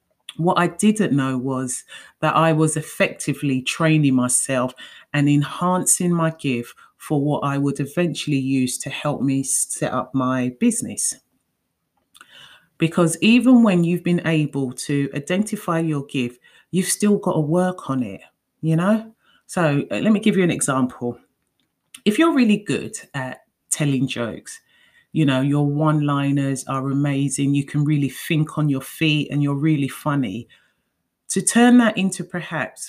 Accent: British